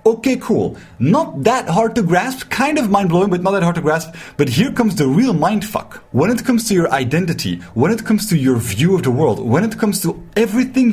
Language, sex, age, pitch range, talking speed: English, male, 30-49, 130-205 Hz, 235 wpm